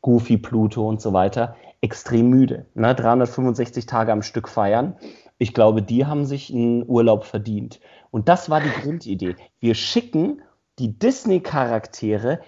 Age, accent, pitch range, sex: 40-59, German, 115-155 Hz, male